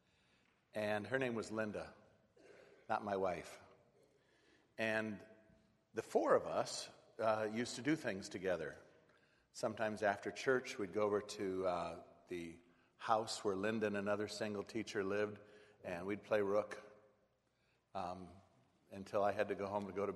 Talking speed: 150 wpm